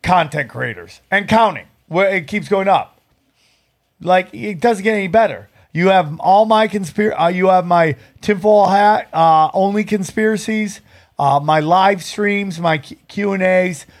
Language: English